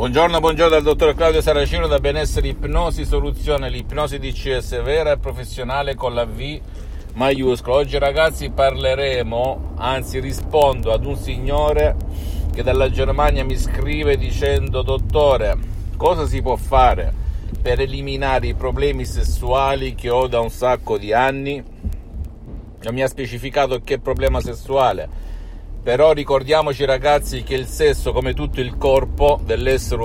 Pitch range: 95-140 Hz